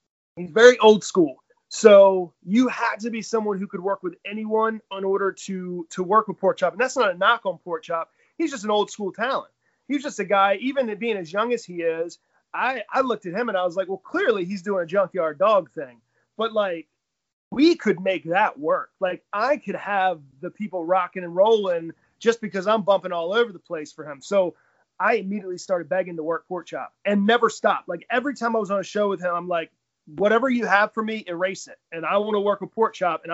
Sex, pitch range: male, 170-215 Hz